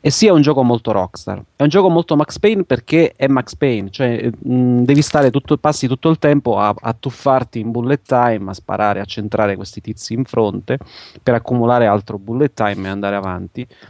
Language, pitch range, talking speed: Italian, 100-120 Hz, 210 wpm